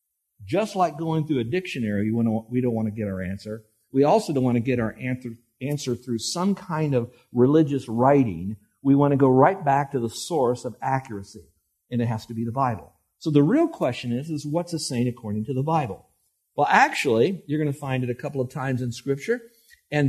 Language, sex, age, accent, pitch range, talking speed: English, male, 50-69, American, 115-165 Hz, 215 wpm